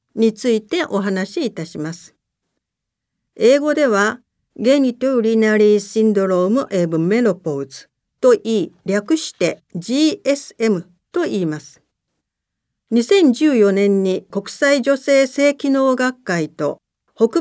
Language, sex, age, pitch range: Japanese, female, 50-69, 200-270 Hz